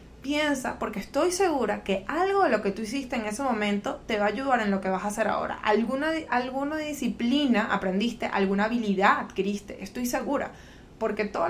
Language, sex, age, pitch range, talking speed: Spanish, female, 20-39, 205-265 Hz, 190 wpm